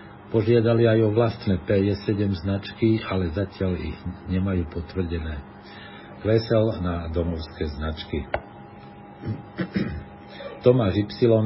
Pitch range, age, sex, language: 95-110 Hz, 50-69, male, Slovak